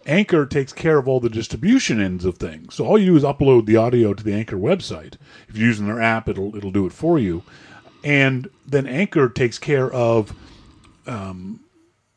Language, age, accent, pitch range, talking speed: English, 40-59, American, 110-150 Hz, 195 wpm